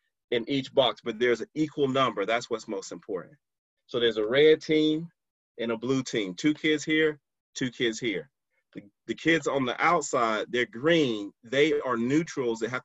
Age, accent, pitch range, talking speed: 30-49, American, 115-160 Hz, 185 wpm